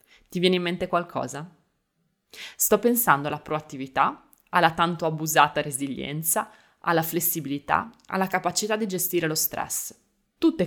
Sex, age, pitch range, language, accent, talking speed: female, 20-39, 160-205 Hz, Italian, native, 125 wpm